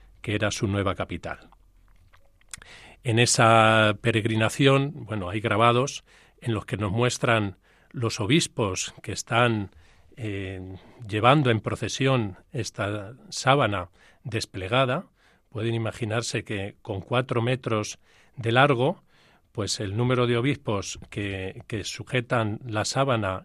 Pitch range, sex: 100-130 Hz, male